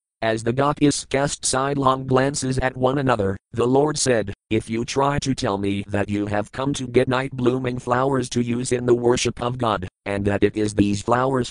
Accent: American